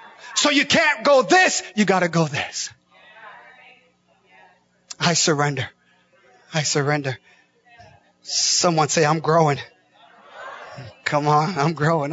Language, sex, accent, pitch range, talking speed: English, male, American, 130-190 Hz, 110 wpm